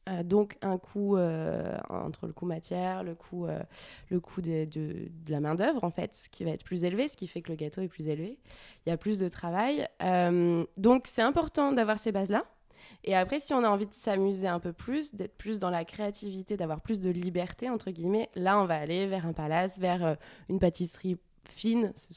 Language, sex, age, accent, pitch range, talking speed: French, female, 20-39, French, 175-215 Hz, 215 wpm